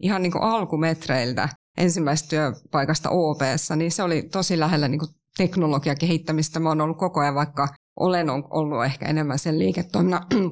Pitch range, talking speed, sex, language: 150-175 Hz, 145 wpm, female, Finnish